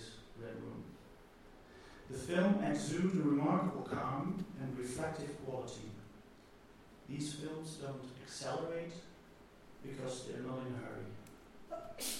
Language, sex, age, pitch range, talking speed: English, male, 40-59, 130-160 Hz, 95 wpm